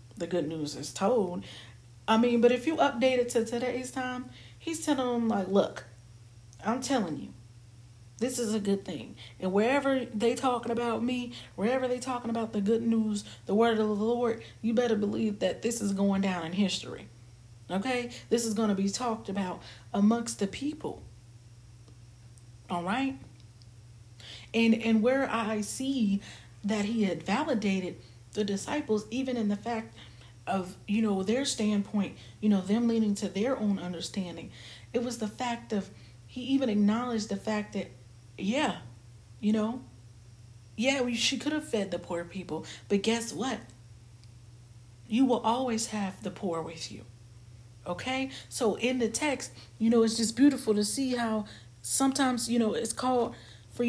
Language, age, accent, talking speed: English, 40-59, American, 165 wpm